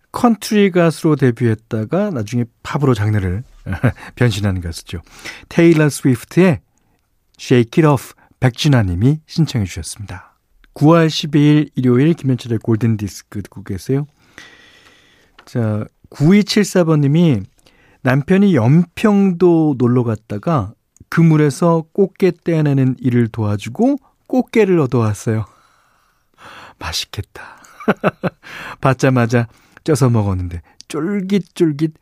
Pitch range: 110-165 Hz